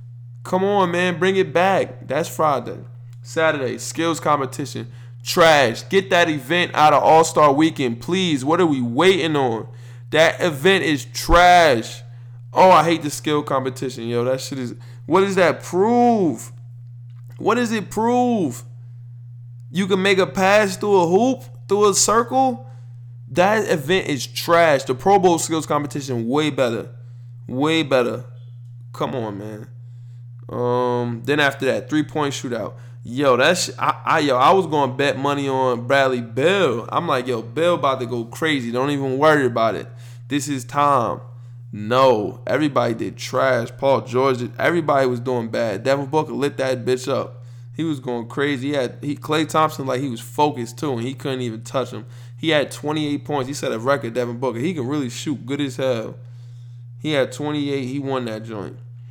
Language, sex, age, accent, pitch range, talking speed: English, male, 20-39, American, 120-155 Hz, 175 wpm